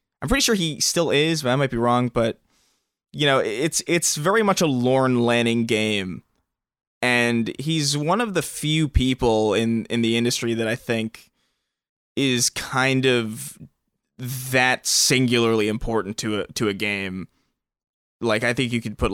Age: 20-39